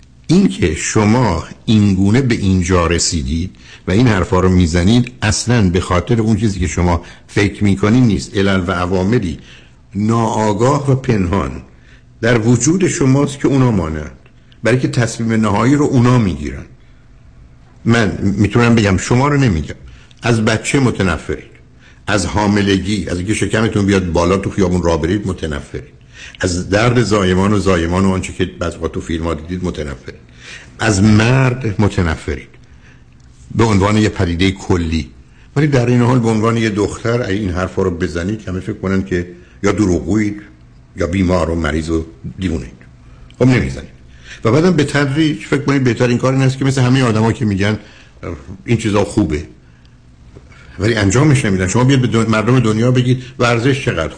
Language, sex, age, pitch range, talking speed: Persian, male, 60-79, 85-115 Hz, 155 wpm